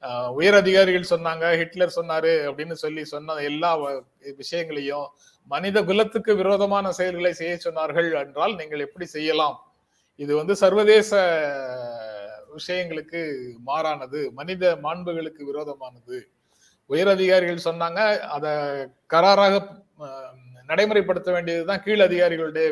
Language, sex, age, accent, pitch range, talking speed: Tamil, male, 30-49, native, 145-195 Hz, 90 wpm